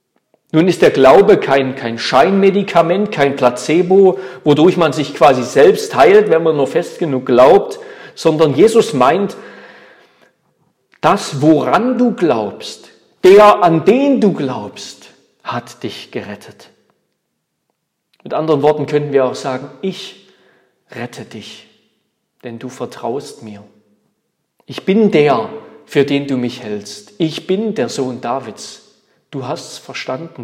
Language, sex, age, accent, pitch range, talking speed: German, male, 40-59, German, 125-175 Hz, 130 wpm